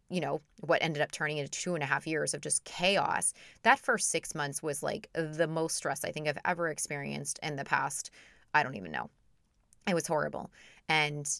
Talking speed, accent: 210 wpm, American